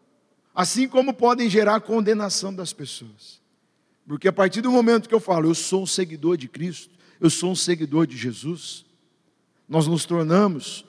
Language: Portuguese